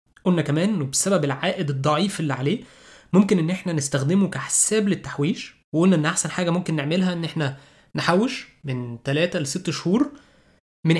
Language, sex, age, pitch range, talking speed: Arabic, male, 20-39, 145-185 Hz, 145 wpm